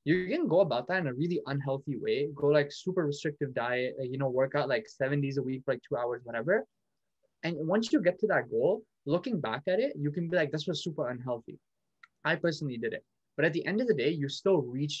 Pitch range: 140-175 Hz